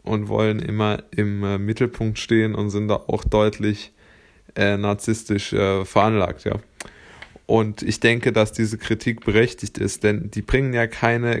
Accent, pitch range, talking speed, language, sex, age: German, 105-120 Hz, 160 wpm, German, male, 20-39